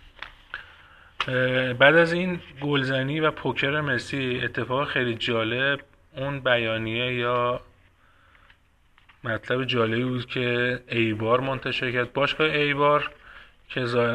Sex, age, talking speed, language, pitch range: male, 30-49, 110 wpm, Persian, 115-135 Hz